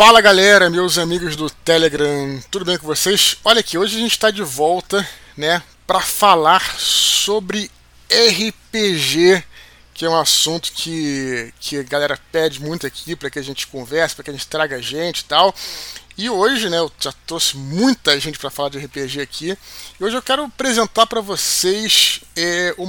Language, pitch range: Portuguese, 150-190 Hz